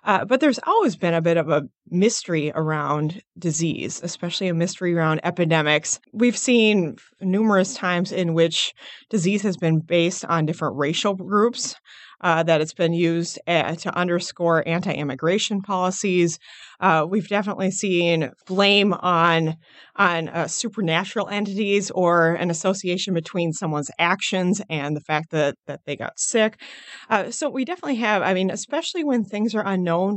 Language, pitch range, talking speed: English, 165-205 Hz, 150 wpm